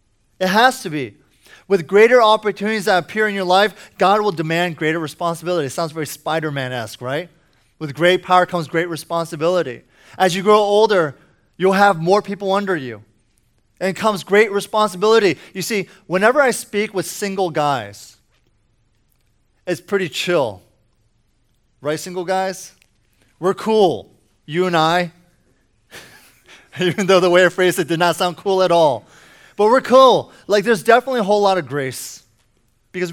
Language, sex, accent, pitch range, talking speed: English, male, American, 135-200 Hz, 155 wpm